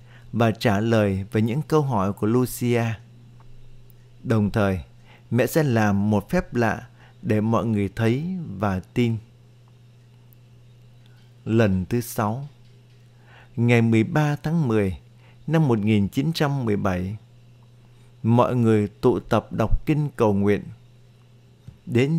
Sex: male